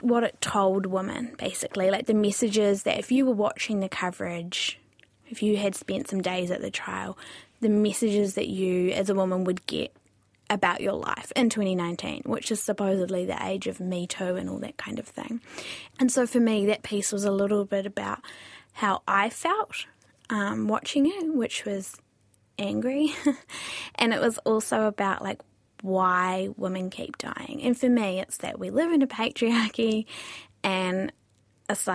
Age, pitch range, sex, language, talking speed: 10-29, 185-230 Hz, female, English, 175 wpm